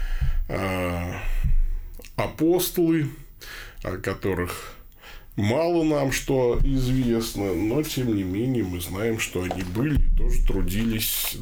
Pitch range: 95-135 Hz